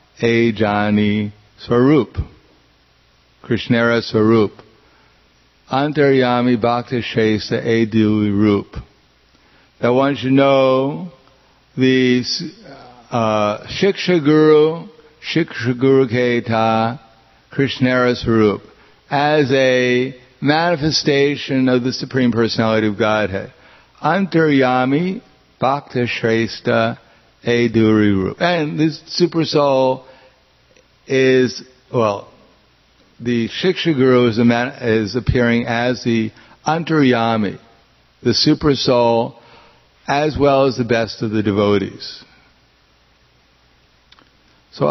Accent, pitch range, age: American, 110-130 Hz, 60-79